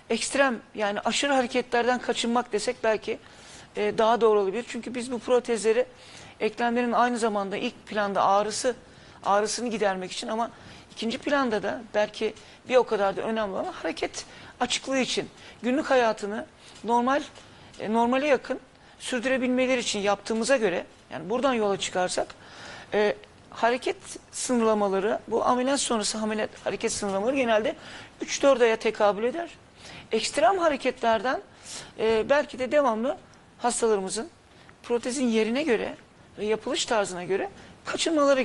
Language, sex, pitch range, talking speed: Turkish, male, 210-255 Hz, 120 wpm